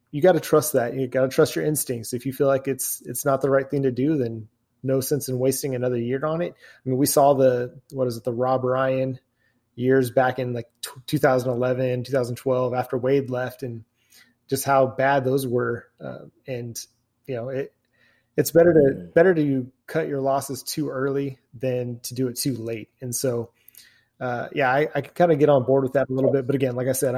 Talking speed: 225 wpm